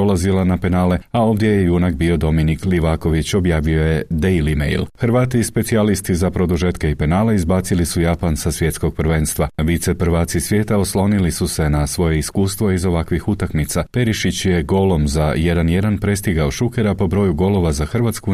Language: Croatian